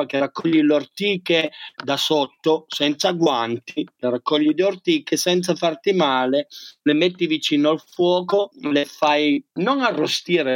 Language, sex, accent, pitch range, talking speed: Italian, male, native, 135-175 Hz, 135 wpm